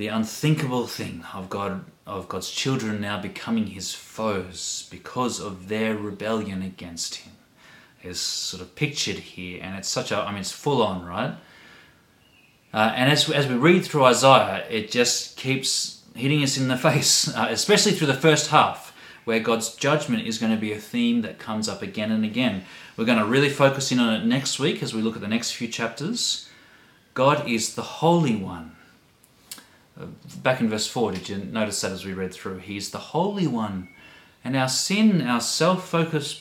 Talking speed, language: 190 wpm, English